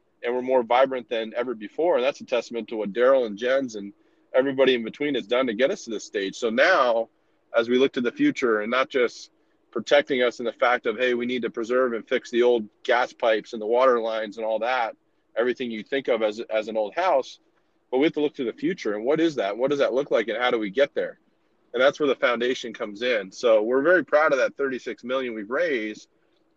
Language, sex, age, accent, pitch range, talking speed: English, male, 30-49, American, 115-140 Hz, 255 wpm